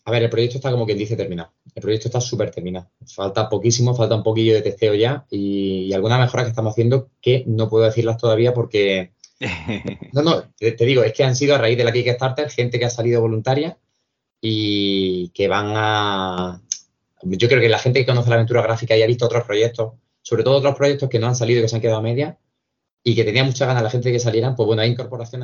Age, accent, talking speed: 20-39, Spanish, 240 wpm